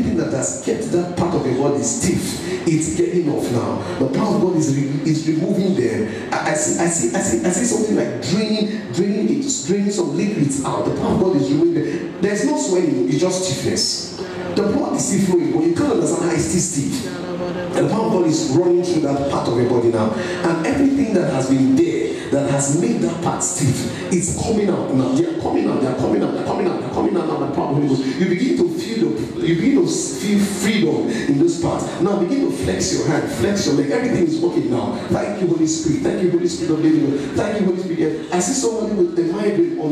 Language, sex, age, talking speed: English, male, 50-69, 235 wpm